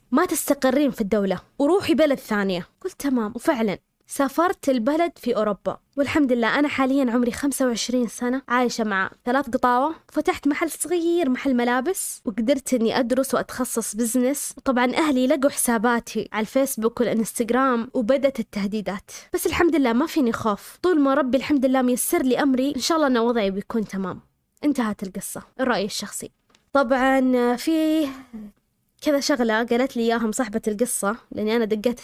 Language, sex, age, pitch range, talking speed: Arabic, female, 20-39, 220-270 Hz, 150 wpm